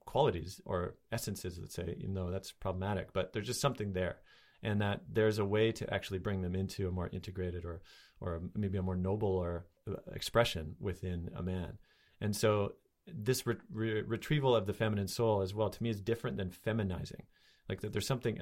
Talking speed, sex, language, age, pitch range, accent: 195 wpm, male, English, 30-49, 95-115 Hz, American